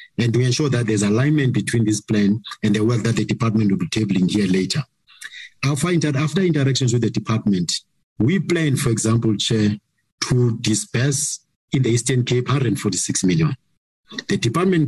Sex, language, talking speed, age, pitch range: male, English, 170 wpm, 50-69, 115-150 Hz